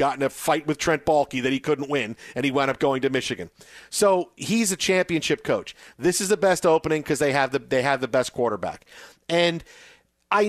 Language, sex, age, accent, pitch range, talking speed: English, male, 40-59, American, 145-215 Hz, 210 wpm